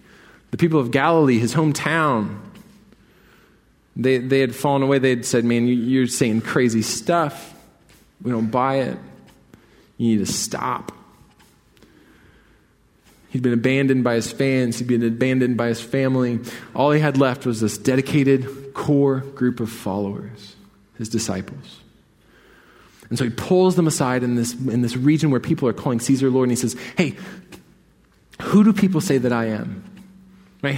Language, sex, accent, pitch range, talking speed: English, male, American, 130-175 Hz, 155 wpm